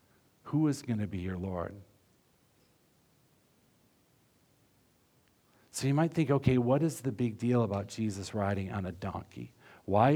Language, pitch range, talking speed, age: English, 95-125 Hz, 140 wpm, 50-69